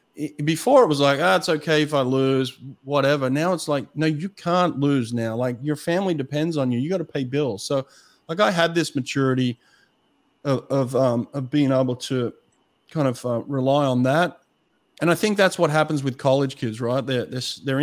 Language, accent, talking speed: English, Australian, 205 wpm